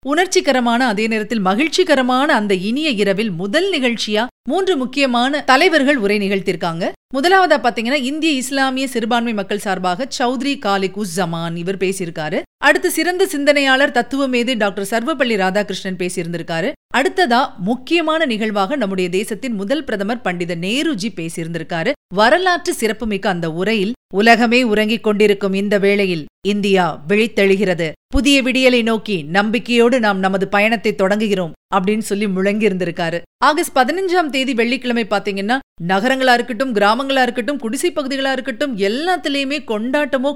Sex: female